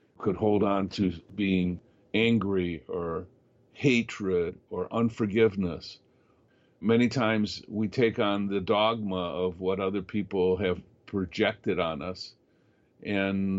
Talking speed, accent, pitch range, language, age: 115 wpm, American, 90-115 Hz, English, 50-69